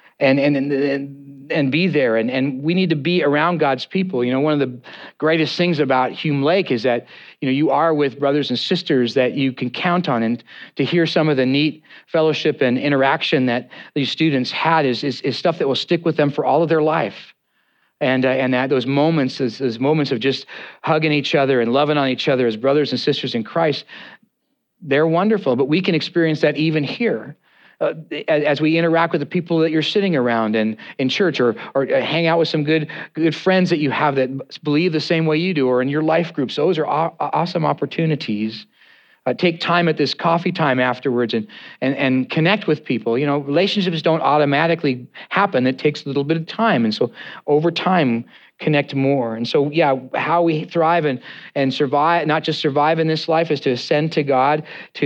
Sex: male